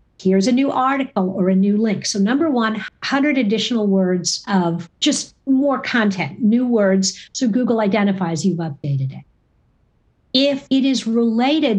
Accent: American